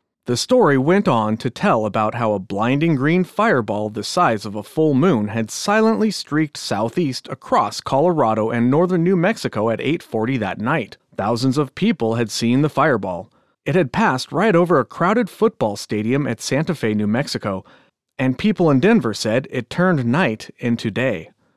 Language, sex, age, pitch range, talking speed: English, male, 30-49, 110-170 Hz, 175 wpm